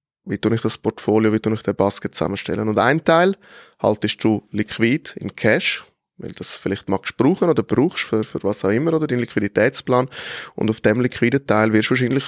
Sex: male